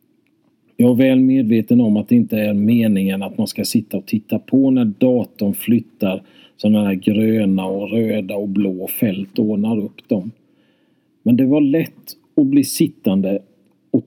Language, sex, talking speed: Swedish, male, 170 wpm